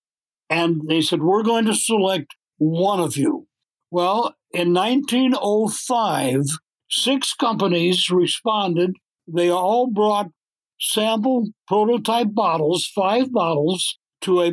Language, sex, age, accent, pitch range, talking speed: English, male, 60-79, American, 170-220 Hz, 105 wpm